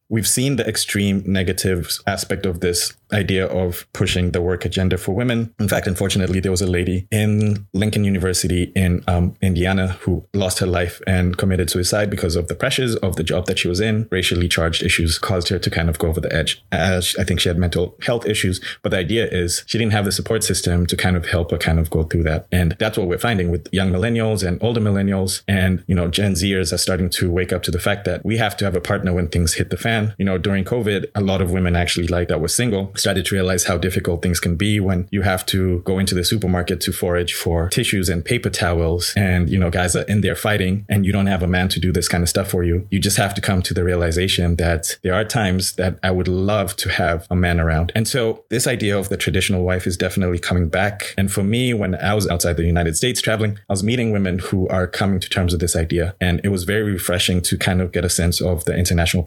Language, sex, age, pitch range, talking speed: English, male, 20-39, 90-100 Hz, 255 wpm